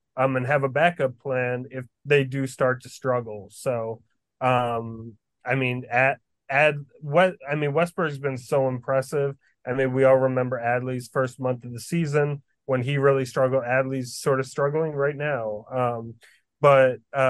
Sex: male